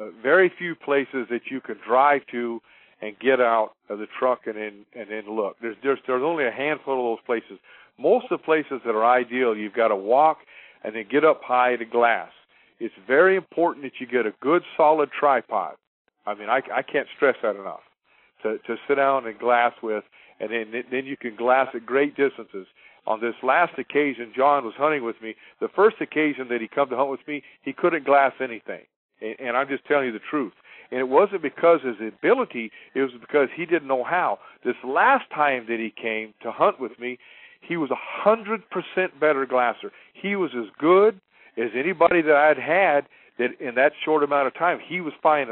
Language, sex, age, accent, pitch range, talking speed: English, male, 50-69, American, 120-155 Hz, 210 wpm